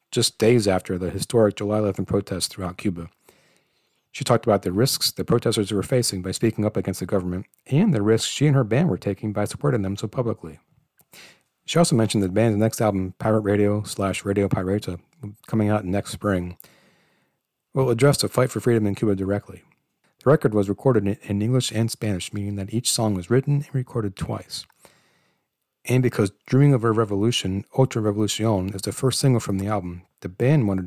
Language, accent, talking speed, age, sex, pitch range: English, American, 195 wpm, 40-59, male, 100-120 Hz